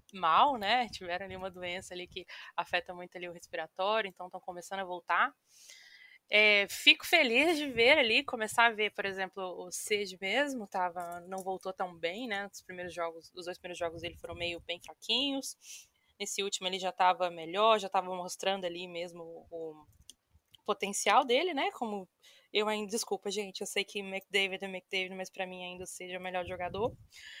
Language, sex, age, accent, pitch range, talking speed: Portuguese, female, 20-39, Brazilian, 180-215 Hz, 190 wpm